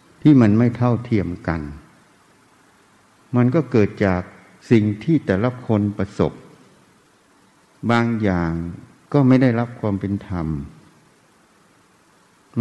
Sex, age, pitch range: male, 60-79, 95-120 Hz